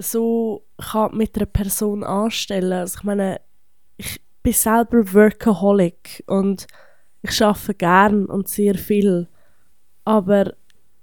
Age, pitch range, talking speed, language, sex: 20-39, 200-235 Hz, 115 wpm, German, female